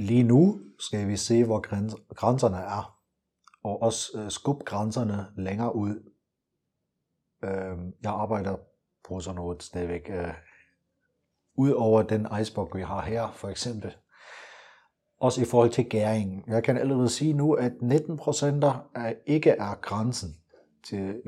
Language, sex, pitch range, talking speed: Danish, male, 95-120 Hz, 130 wpm